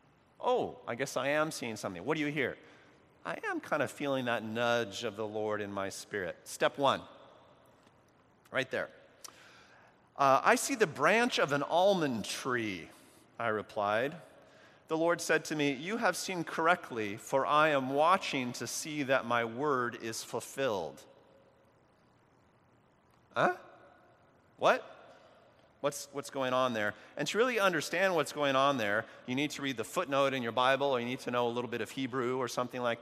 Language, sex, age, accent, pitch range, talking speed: English, male, 40-59, American, 120-155 Hz, 175 wpm